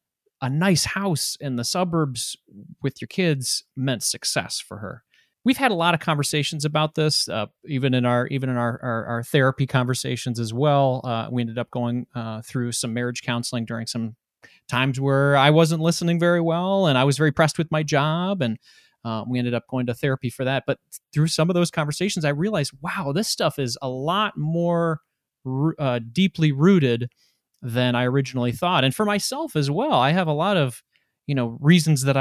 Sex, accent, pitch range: male, American, 125-160 Hz